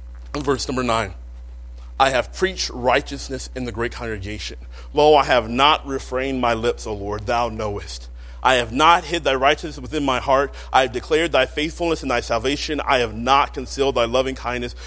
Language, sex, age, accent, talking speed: English, male, 30-49, American, 185 wpm